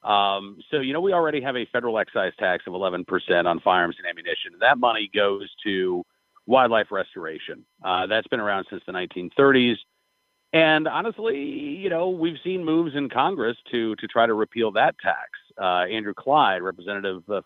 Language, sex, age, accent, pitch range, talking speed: English, male, 50-69, American, 105-165 Hz, 180 wpm